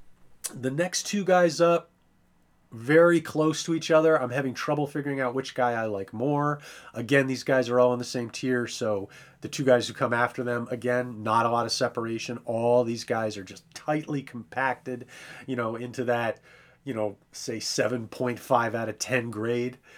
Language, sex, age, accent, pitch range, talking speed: English, male, 30-49, American, 115-140 Hz, 185 wpm